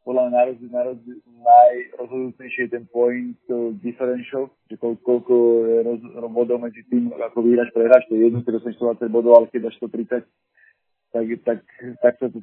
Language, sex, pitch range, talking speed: Slovak, male, 120-130 Hz, 145 wpm